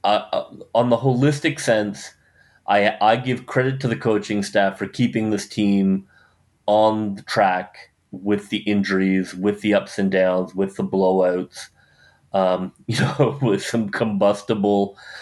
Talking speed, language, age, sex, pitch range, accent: 145 wpm, English, 30-49, male, 95-110 Hz, American